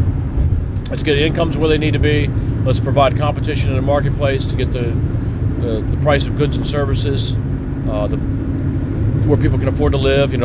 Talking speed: 190 wpm